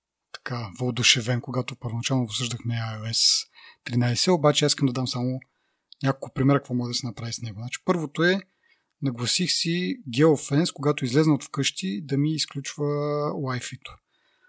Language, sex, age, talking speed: Bulgarian, male, 30-49, 150 wpm